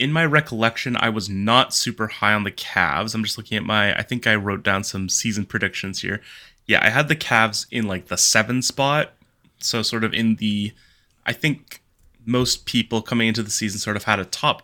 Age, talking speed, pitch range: 20-39, 215 wpm, 100-120 Hz